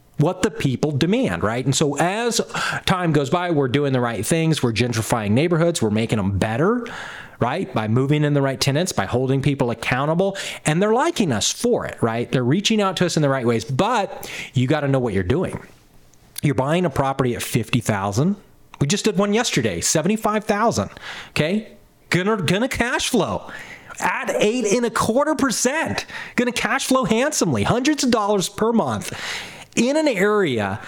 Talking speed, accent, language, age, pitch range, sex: 180 wpm, American, English, 40-59, 125-205 Hz, male